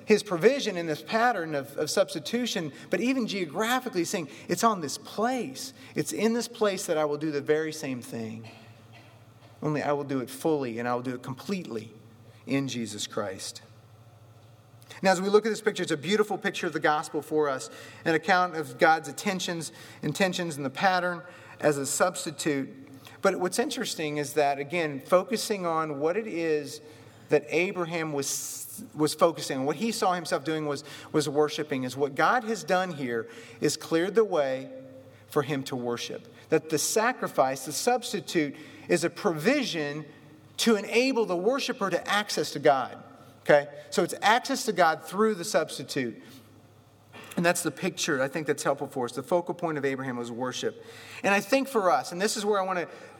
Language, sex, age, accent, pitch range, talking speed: English, male, 40-59, American, 135-190 Hz, 185 wpm